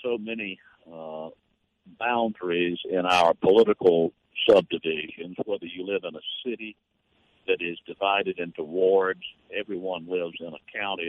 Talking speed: 130 wpm